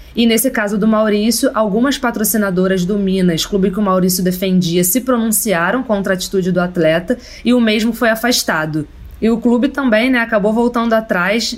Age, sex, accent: 20-39, female, Brazilian